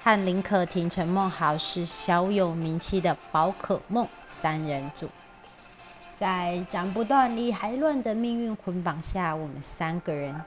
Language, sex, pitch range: Chinese, female, 155-200 Hz